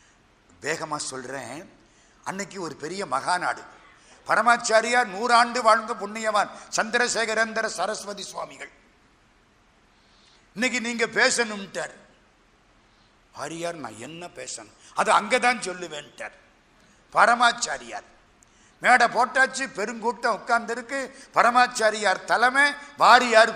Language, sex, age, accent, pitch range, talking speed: Tamil, male, 50-69, native, 190-250 Hz, 65 wpm